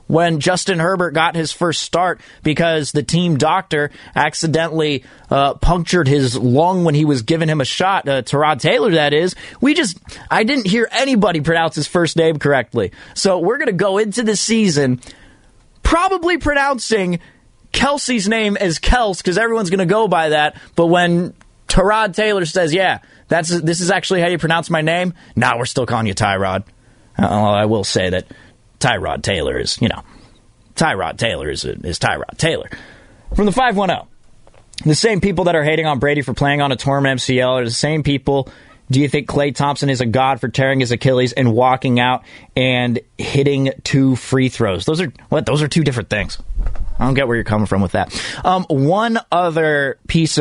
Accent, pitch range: American, 130-170 Hz